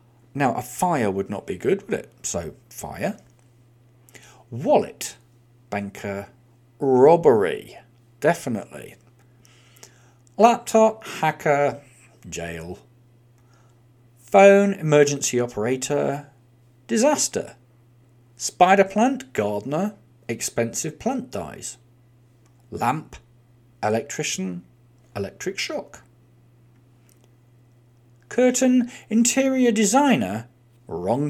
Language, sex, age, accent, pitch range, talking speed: English, male, 40-59, British, 120-145 Hz, 70 wpm